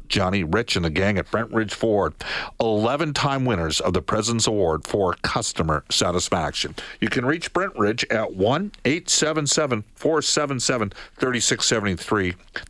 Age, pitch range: 50-69, 95-125 Hz